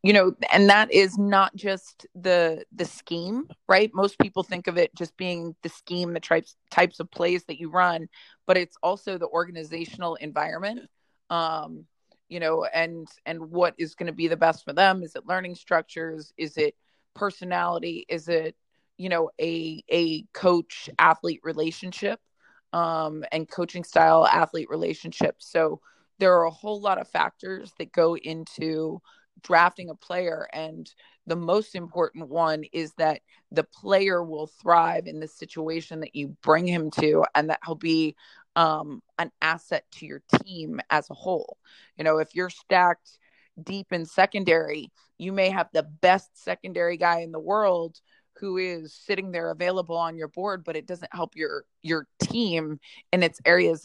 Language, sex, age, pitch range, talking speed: English, female, 30-49, 160-185 Hz, 170 wpm